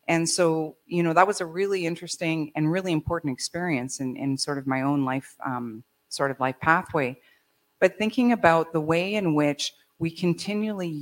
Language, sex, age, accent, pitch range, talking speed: English, female, 40-59, American, 145-175 Hz, 185 wpm